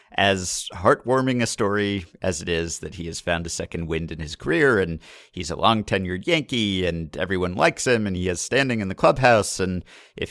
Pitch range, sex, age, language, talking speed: 90-110 Hz, male, 50-69, English, 205 wpm